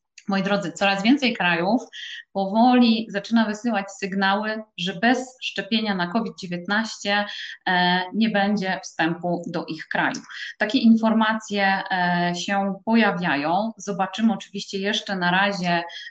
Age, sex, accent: 20-39, female, native